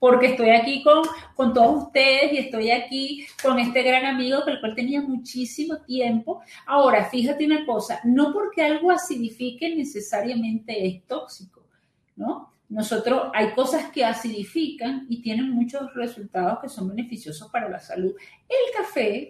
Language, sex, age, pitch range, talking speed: Spanish, female, 40-59, 215-285 Hz, 150 wpm